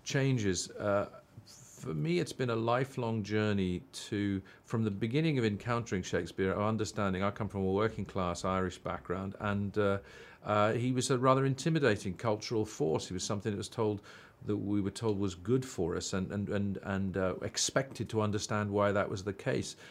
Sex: male